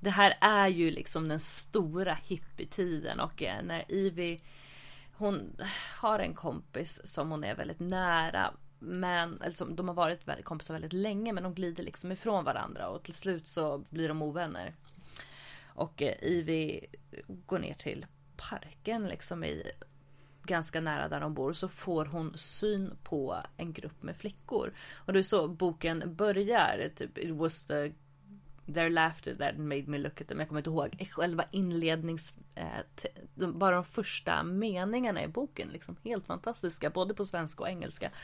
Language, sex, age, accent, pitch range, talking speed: English, female, 30-49, Swedish, 155-185 Hz, 165 wpm